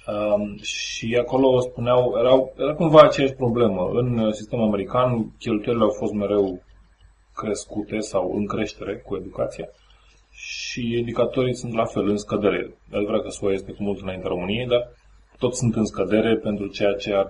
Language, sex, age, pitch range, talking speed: Romanian, male, 20-39, 95-115 Hz, 165 wpm